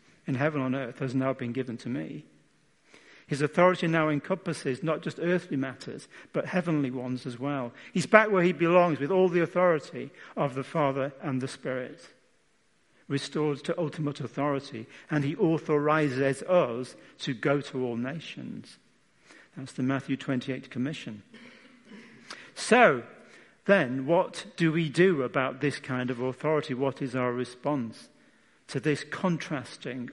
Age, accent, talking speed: 50-69, British, 145 wpm